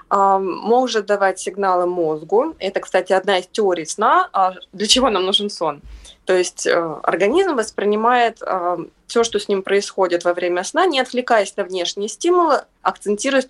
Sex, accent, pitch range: female, native, 180-240 Hz